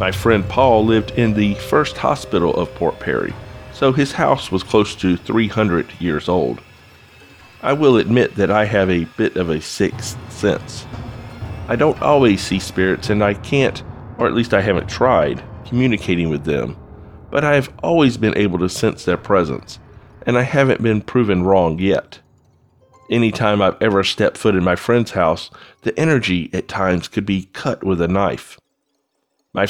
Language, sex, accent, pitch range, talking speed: English, male, American, 95-115 Hz, 175 wpm